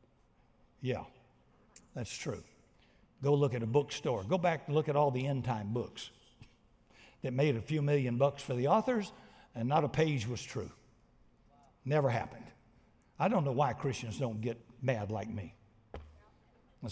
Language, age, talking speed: English, 60-79, 165 wpm